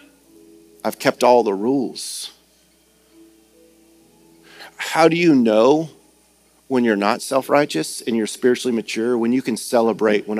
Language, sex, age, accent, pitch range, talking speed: English, male, 40-59, American, 105-135 Hz, 125 wpm